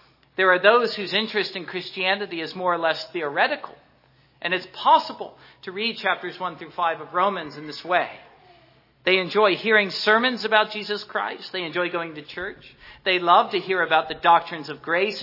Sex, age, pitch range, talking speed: male, 50-69, 155-200 Hz, 185 wpm